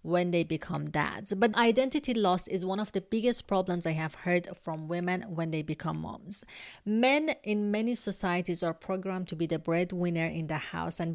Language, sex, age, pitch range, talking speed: English, female, 30-49, 170-215 Hz, 195 wpm